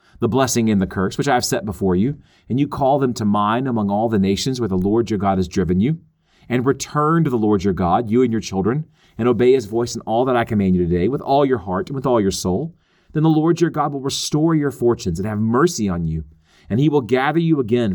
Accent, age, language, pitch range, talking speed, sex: American, 40-59, English, 95-140 Hz, 270 wpm, male